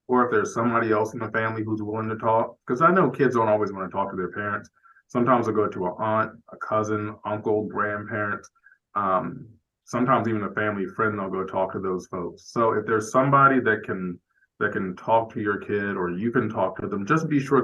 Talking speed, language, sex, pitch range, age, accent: 230 wpm, English, male, 95-115 Hz, 20-39, American